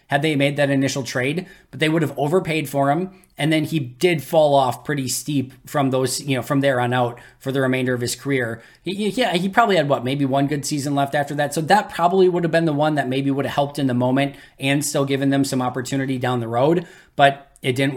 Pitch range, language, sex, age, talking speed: 130-155 Hz, English, male, 20-39, 250 wpm